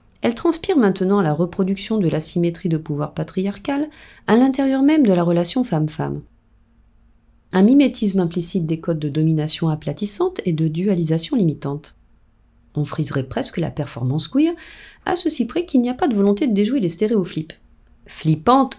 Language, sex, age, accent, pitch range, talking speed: French, female, 40-59, French, 155-255 Hz, 160 wpm